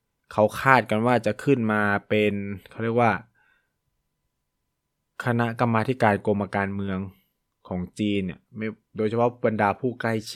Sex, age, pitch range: male, 20-39, 95-110 Hz